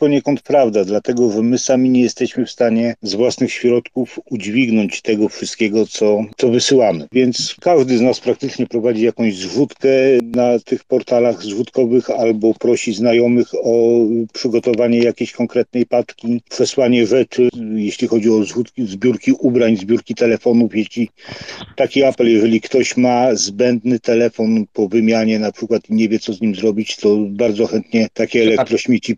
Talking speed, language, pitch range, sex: 150 wpm, Polish, 110-125 Hz, male